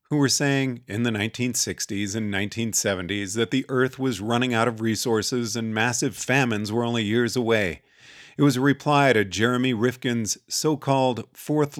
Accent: American